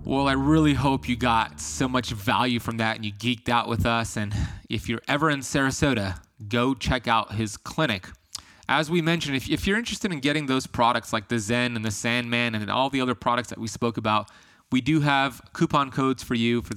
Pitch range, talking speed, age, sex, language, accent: 110-135 Hz, 220 wpm, 20-39, male, English, American